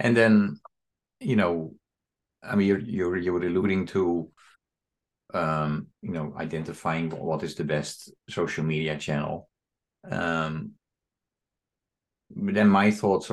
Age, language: 50-69, English